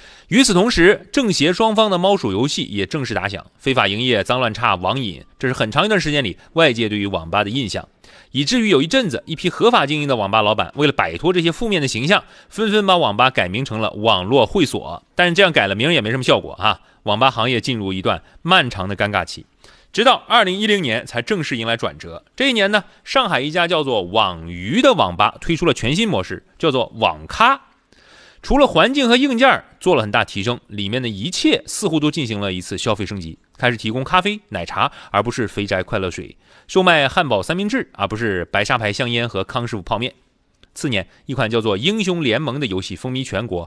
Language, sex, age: Chinese, male, 30-49